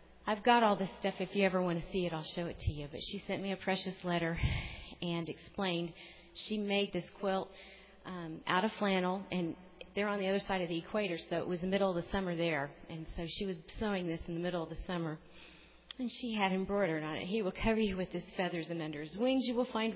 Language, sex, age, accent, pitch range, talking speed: English, female, 40-59, American, 175-220 Hz, 255 wpm